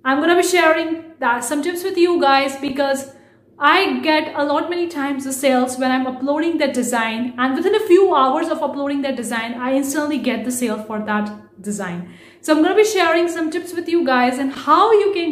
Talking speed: 225 wpm